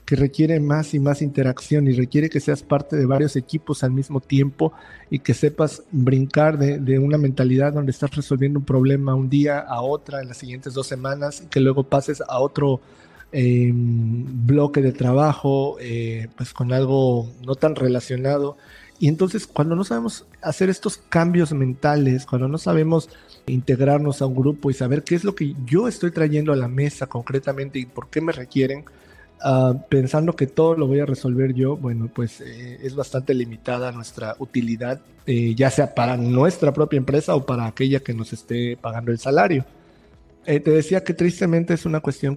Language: Spanish